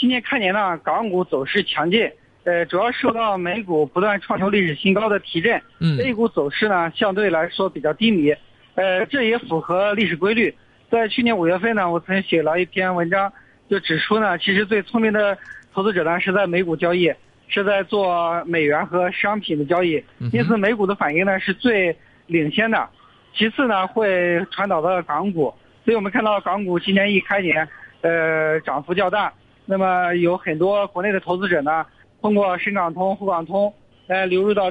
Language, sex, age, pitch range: Chinese, male, 50-69, 170-205 Hz